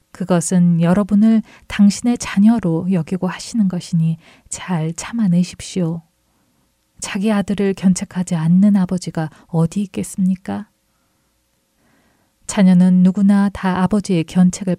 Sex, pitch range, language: female, 170-205 Hz, Korean